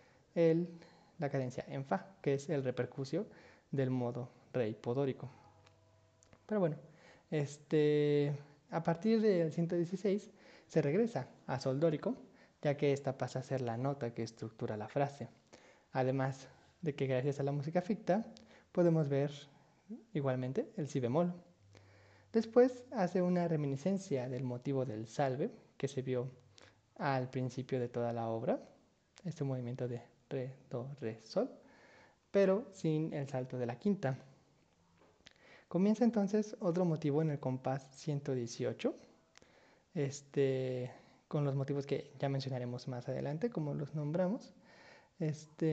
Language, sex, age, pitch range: Spanish, male, 20-39, 130-175 Hz